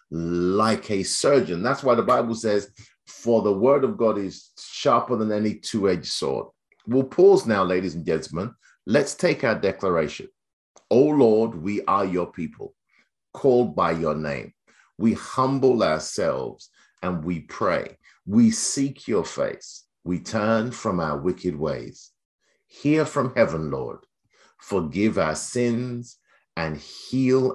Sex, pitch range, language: male, 85-120 Hz, English